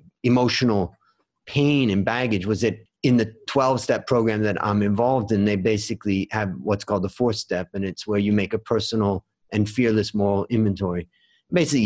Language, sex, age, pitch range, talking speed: English, male, 30-49, 100-120 Hz, 170 wpm